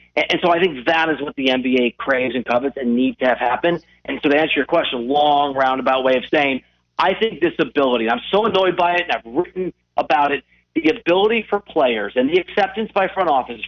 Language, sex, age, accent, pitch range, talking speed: English, male, 40-59, American, 145-205 Hz, 230 wpm